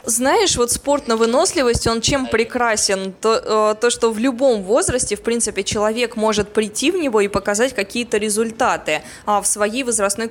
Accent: native